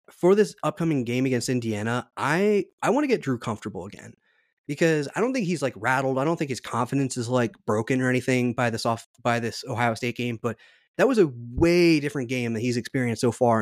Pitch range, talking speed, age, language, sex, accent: 120-140 Hz, 215 wpm, 20-39, English, male, American